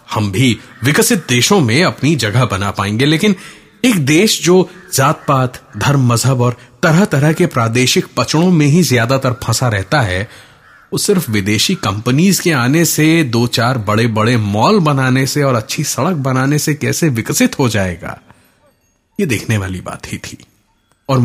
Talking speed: 165 wpm